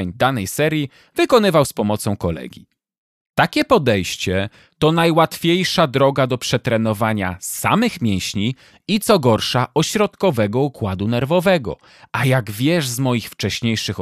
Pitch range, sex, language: 110-165 Hz, male, Polish